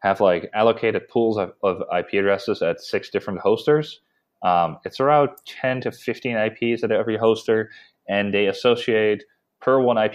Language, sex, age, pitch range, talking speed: English, male, 20-39, 90-110 Hz, 165 wpm